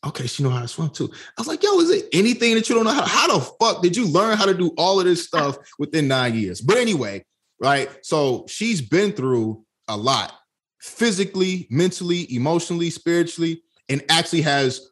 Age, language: 20-39, English